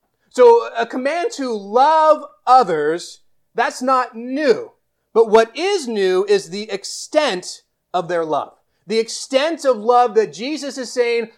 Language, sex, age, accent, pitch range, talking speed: English, male, 30-49, American, 180-265 Hz, 140 wpm